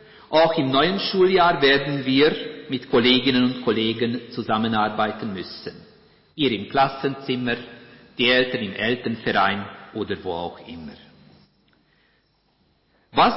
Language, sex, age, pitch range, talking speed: German, male, 50-69, 120-175 Hz, 110 wpm